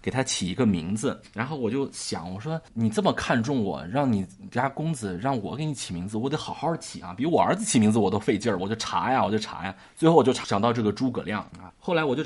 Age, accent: 20-39, native